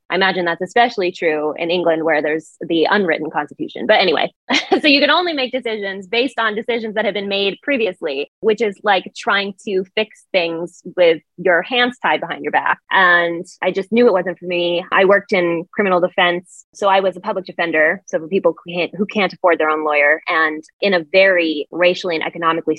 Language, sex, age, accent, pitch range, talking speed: English, female, 20-39, American, 165-205 Hz, 205 wpm